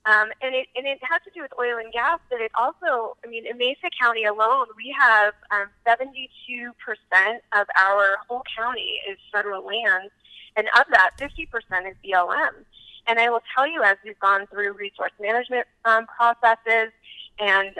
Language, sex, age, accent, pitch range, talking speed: English, female, 20-39, American, 200-265 Hz, 170 wpm